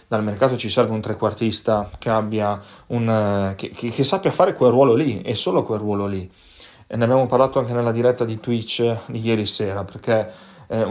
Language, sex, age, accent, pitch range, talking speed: Italian, male, 30-49, native, 110-120 Hz, 205 wpm